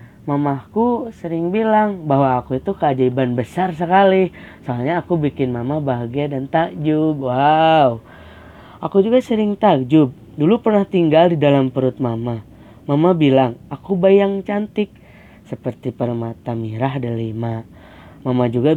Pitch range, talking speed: 125-170 Hz, 125 wpm